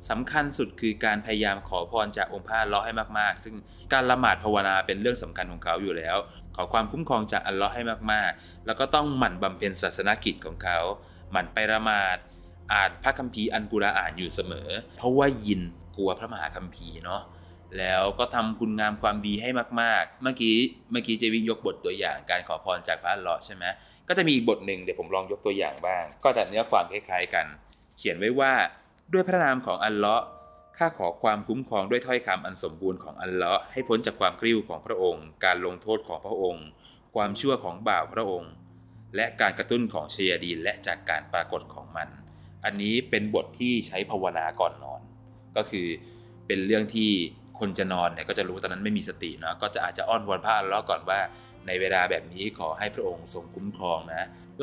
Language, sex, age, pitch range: Thai, male, 20-39, 90-120 Hz